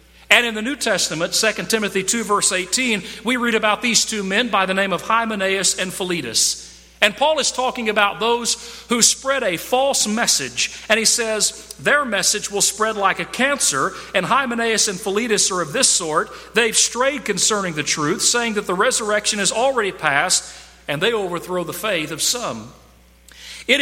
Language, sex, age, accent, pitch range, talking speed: English, male, 40-59, American, 170-230 Hz, 180 wpm